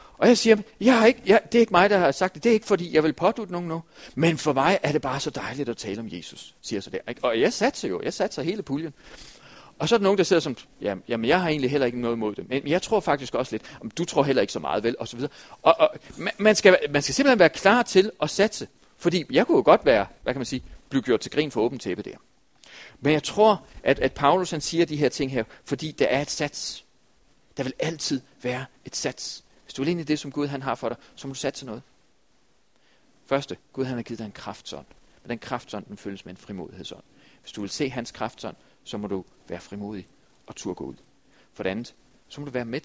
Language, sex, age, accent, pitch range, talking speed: Danish, male, 40-59, native, 115-165 Hz, 265 wpm